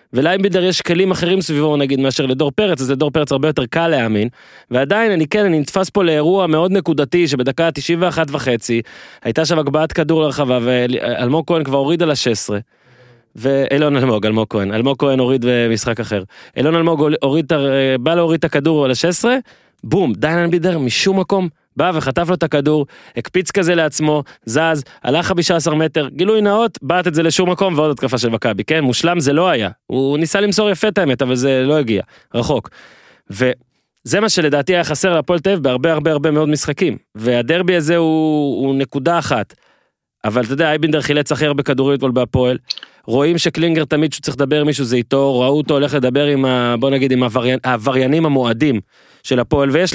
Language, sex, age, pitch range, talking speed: Hebrew, male, 20-39, 130-165 Hz, 185 wpm